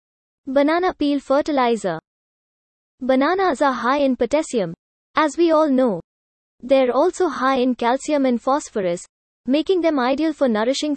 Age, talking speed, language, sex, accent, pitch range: 20-39, 130 wpm, English, female, Indian, 235-295 Hz